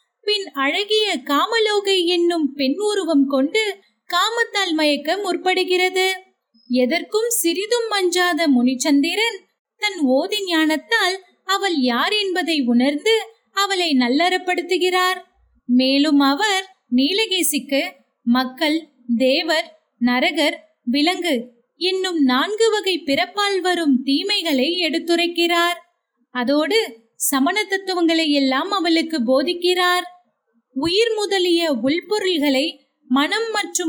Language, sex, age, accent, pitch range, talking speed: Tamil, female, 20-39, native, 270-365 Hz, 50 wpm